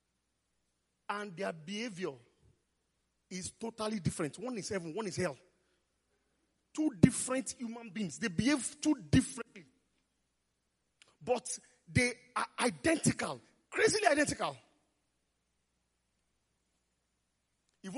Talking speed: 90 wpm